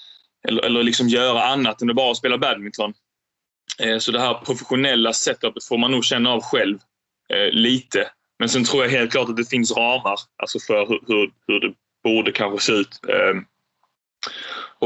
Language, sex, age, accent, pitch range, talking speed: Swedish, male, 20-39, native, 110-125 Hz, 190 wpm